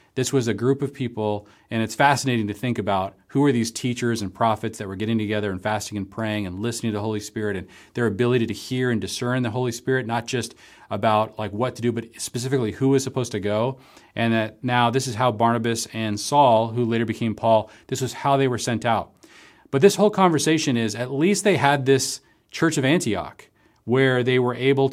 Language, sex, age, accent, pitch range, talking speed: English, male, 40-59, American, 110-135 Hz, 225 wpm